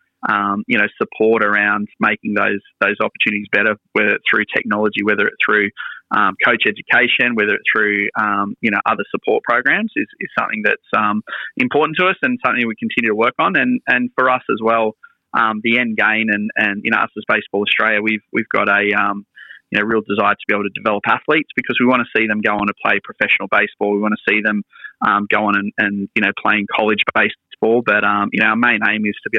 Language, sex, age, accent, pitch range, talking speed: English, male, 20-39, Australian, 105-115 Hz, 235 wpm